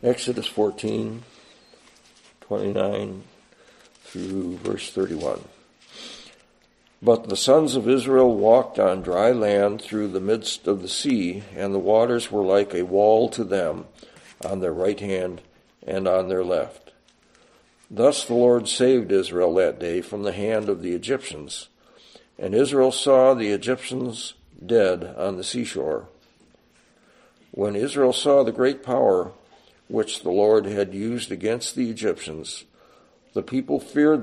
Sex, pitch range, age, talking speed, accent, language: male, 90-115 Hz, 60-79, 135 wpm, American, English